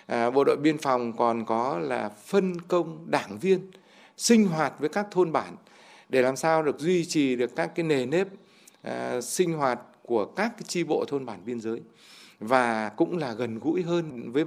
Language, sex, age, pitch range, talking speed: Vietnamese, male, 60-79, 125-175 Hz, 185 wpm